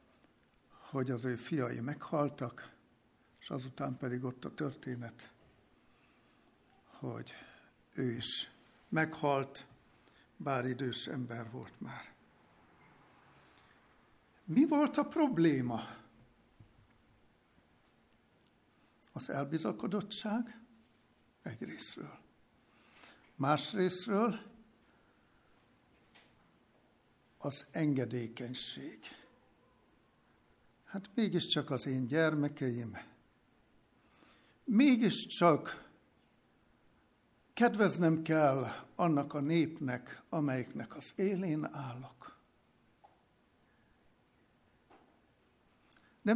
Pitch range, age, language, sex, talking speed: 130-195 Hz, 60-79, Hungarian, male, 60 wpm